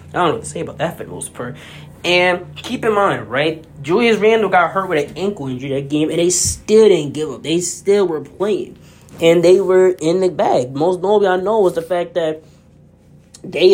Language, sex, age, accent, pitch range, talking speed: English, male, 20-39, American, 145-180 Hz, 225 wpm